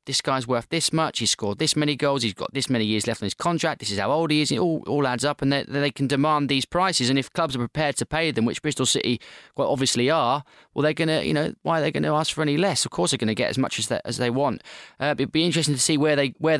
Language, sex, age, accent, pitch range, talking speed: English, male, 20-39, British, 125-155 Hz, 320 wpm